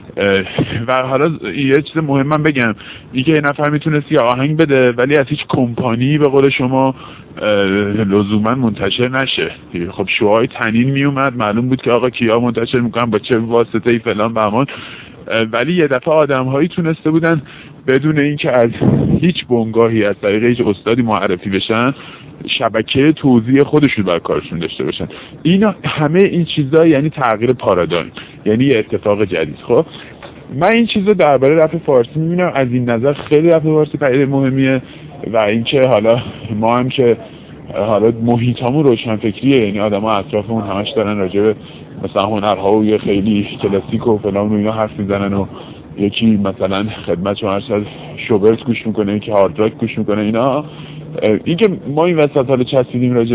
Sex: male